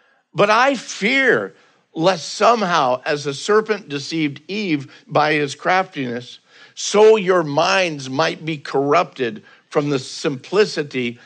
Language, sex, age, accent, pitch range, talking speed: English, male, 50-69, American, 150-195 Hz, 115 wpm